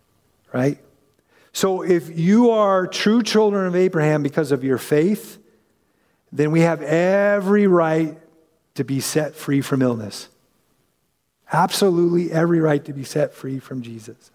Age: 50-69